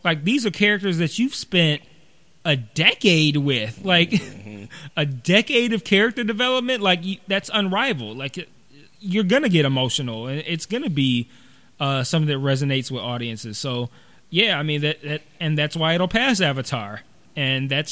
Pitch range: 140-180 Hz